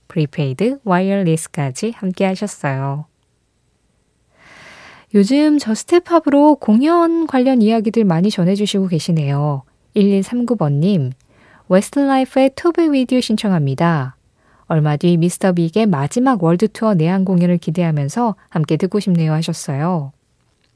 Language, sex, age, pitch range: Korean, female, 20-39, 165-245 Hz